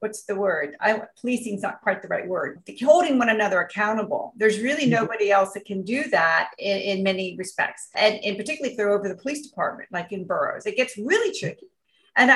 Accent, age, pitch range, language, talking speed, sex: American, 40-59, 200-255 Hz, English, 215 wpm, female